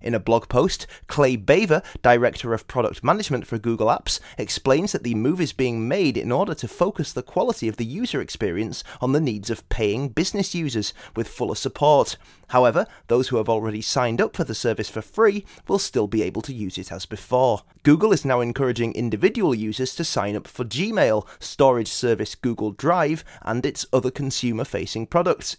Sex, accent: male, British